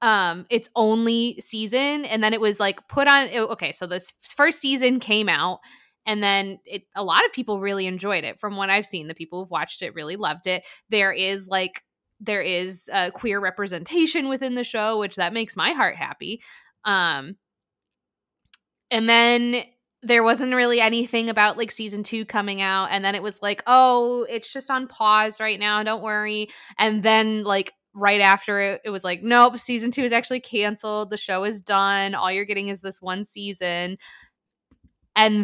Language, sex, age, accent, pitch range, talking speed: English, female, 20-39, American, 195-240 Hz, 190 wpm